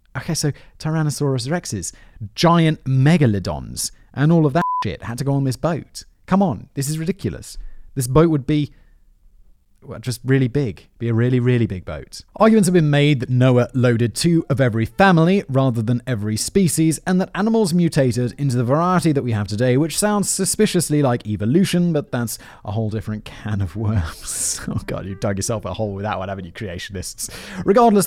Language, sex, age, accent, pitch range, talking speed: English, male, 30-49, British, 110-155 Hz, 190 wpm